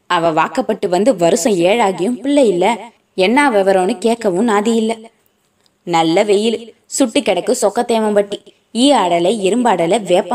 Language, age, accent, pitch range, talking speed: Tamil, 20-39, native, 190-255 Hz, 80 wpm